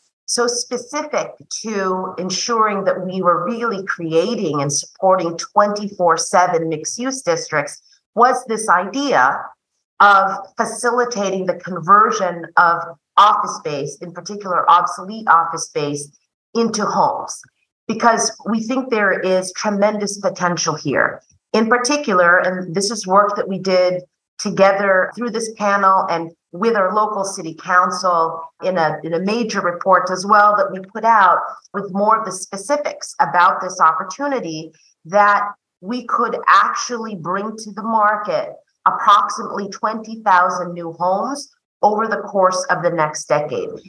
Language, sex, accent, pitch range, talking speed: English, female, American, 175-225 Hz, 130 wpm